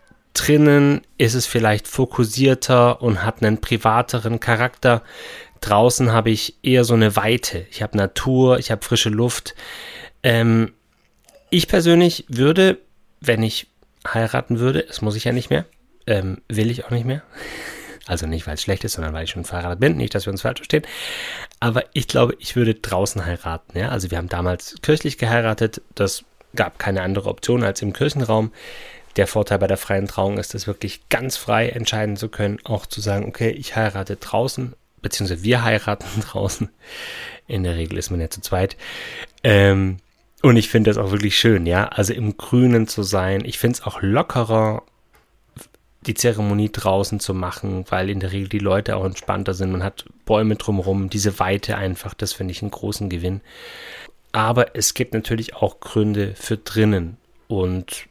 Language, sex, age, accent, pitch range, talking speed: German, male, 30-49, German, 100-120 Hz, 175 wpm